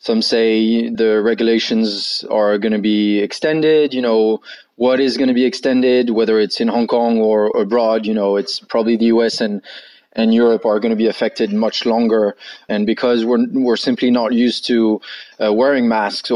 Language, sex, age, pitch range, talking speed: English, male, 20-39, 115-130 Hz, 185 wpm